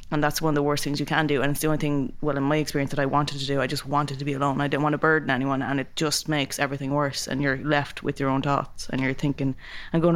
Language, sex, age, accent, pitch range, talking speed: English, female, 20-39, Irish, 135-150 Hz, 320 wpm